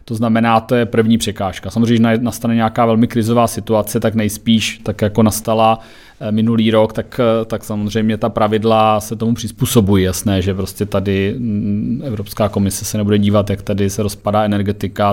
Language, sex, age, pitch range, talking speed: Czech, male, 30-49, 105-115 Hz, 170 wpm